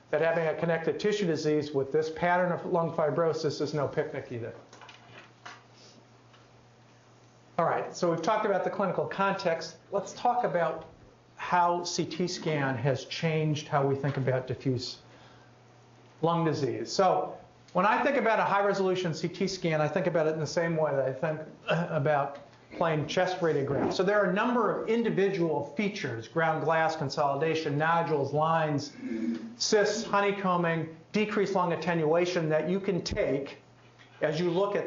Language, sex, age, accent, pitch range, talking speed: English, male, 50-69, American, 145-180 Hz, 155 wpm